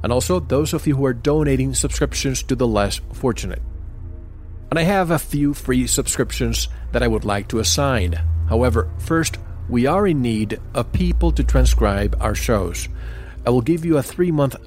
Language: English